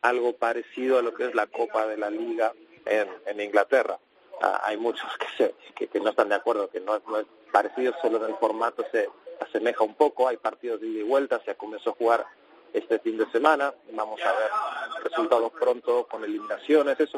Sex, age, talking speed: male, 40-59, 220 wpm